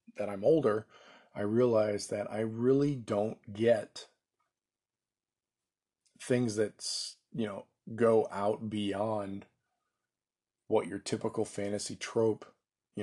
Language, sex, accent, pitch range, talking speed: English, male, American, 100-120 Hz, 105 wpm